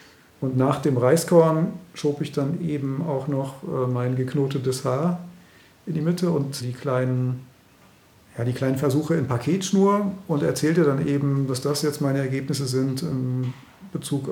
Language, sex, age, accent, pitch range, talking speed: German, male, 40-59, German, 130-155 Hz, 145 wpm